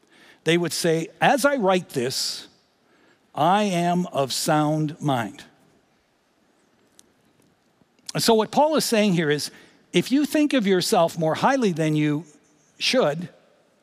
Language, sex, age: English, male, 60-79